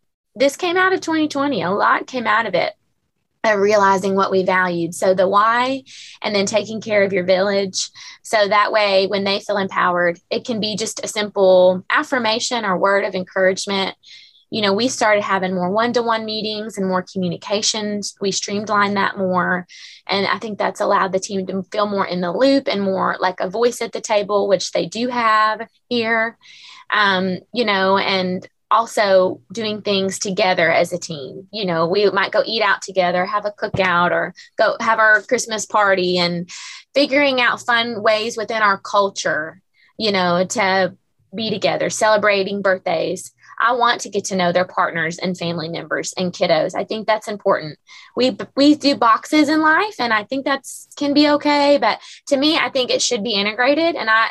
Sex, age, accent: female, 20-39, American